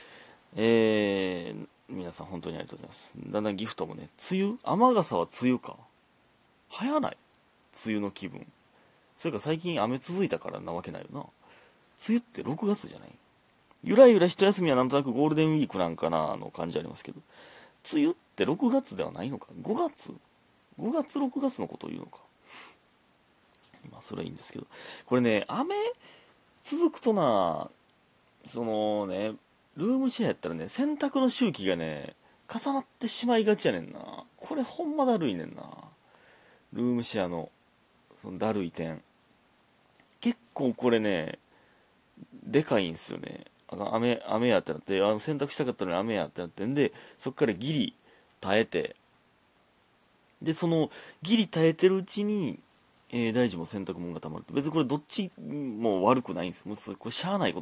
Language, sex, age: Japanese, male, 30-49